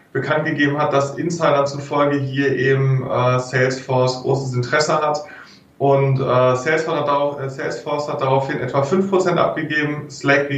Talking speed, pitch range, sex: 155 wpm, 130-145 Hz, male